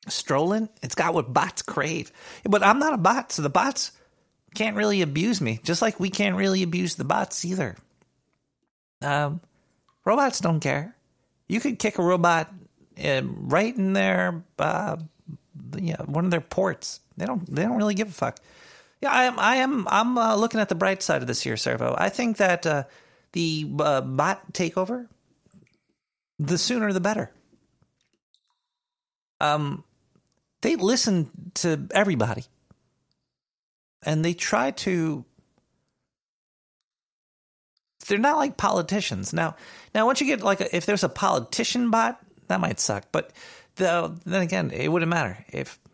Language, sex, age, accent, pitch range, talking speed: English, male, 40-59, American, 160-215 Hz, 155 wpm